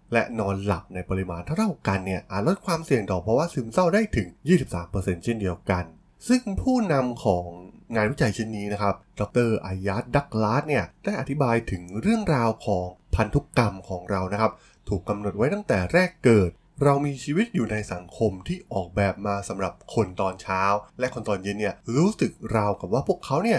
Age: 20-39